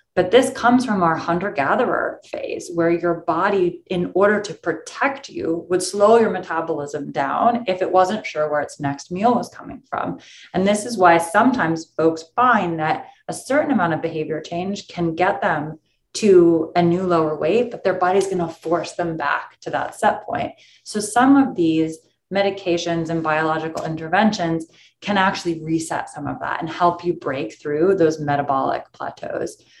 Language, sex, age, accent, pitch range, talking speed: English, female, 30-49, American, 150-185 Hz, 175 wpm